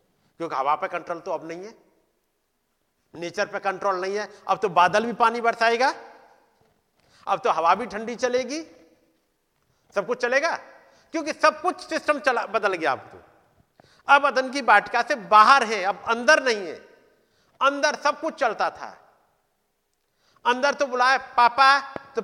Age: 50-69